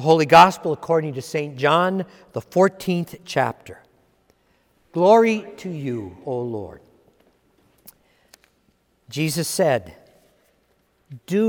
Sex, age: male, 60-79